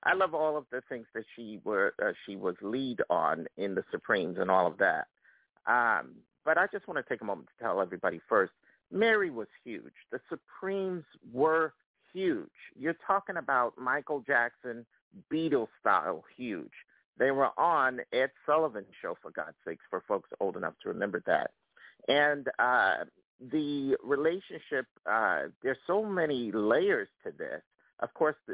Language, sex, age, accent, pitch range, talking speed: English, male, 50-69, American, 120-170 Hz, 165 wpm